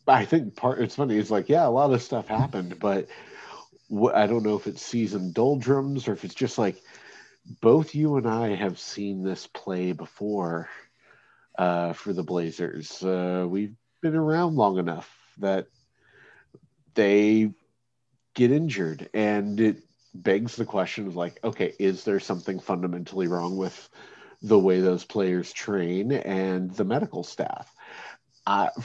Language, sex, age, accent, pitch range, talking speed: English, male, 50-69, American, 90-125 Hz, 150 wpm